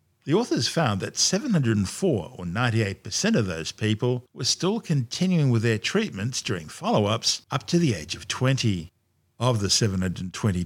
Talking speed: 150 wpm